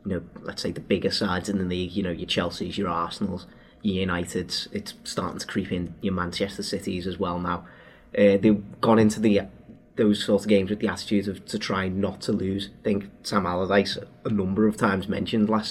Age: 30-49